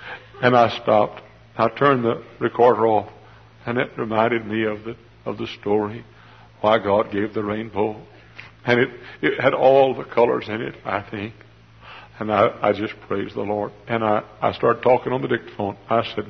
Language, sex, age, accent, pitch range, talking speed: English, male, 60-79, American, 105-115 Hz, 185 wpm